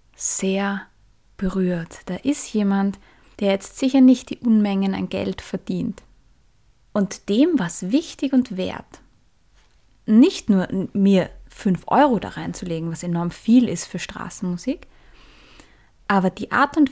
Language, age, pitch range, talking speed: German, 20-39, 190-245 Hz, 130 wpm